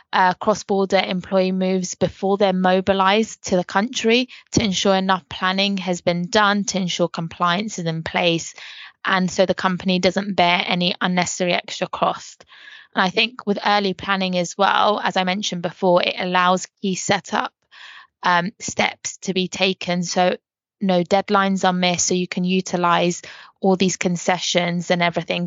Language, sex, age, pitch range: English, female, 20-39, 180-200 Hz